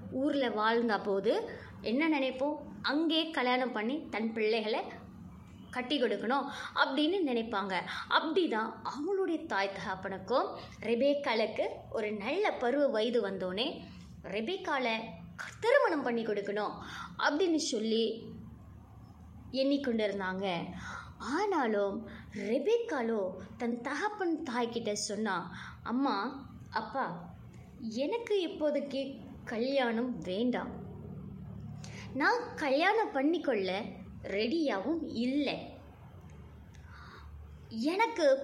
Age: 20-39